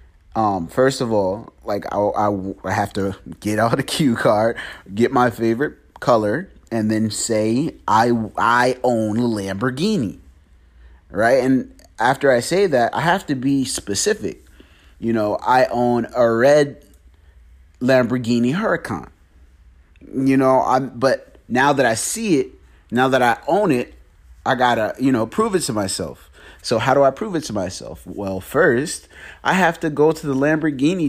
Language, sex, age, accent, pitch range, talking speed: English, male, 30-49, American, 95-130 Hz, 160 wpm